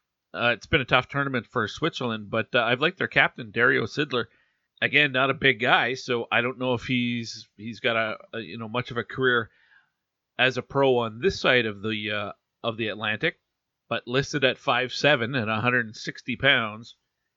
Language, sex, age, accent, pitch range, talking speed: English, male, 40-59, American, 110-125 Hz, 195 wpm